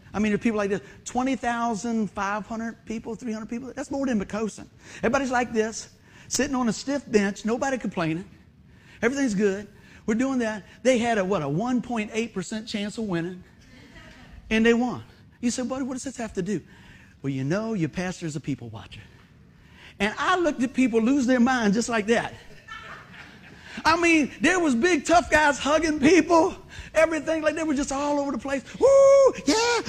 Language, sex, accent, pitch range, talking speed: English, male, American, 200-275 Hz, 180 wpm